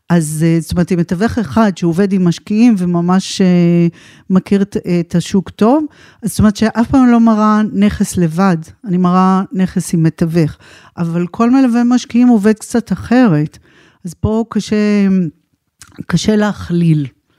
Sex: female